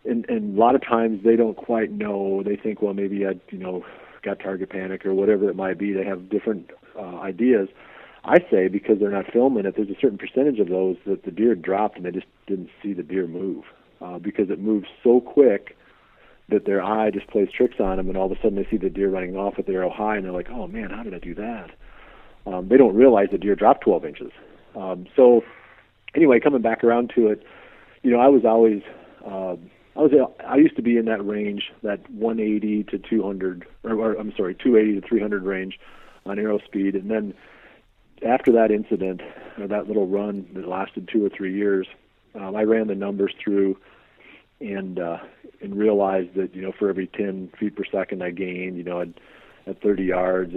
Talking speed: 220 wpm